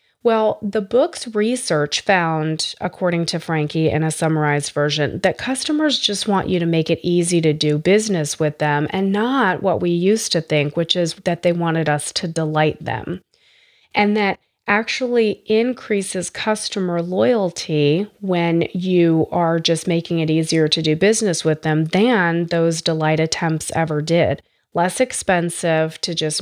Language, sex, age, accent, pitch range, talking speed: English, female, 30-49, American, 155-195 Hz, 160 wpm